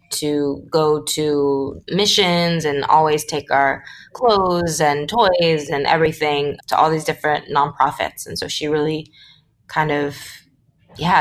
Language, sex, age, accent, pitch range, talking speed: English, female, 20-39, American, 150-170 Hz, 135 wpm